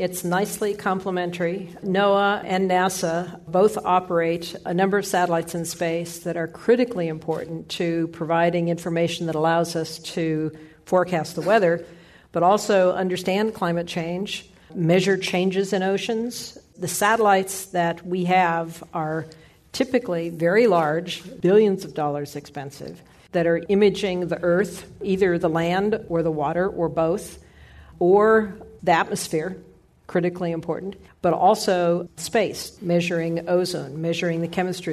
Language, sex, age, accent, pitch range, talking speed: English, female, 50-69, American, 165-190 Hz, 130 wpm